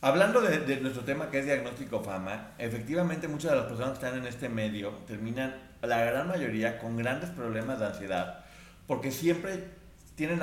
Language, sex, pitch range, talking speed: Spanish, male, 115-160 Hz, 180 wpm